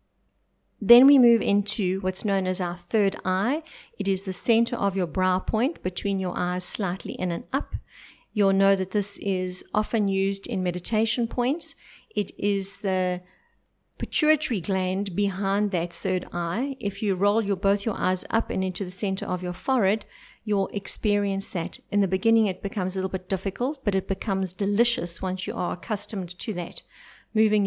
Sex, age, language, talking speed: female, 50-69, English, 175 wpm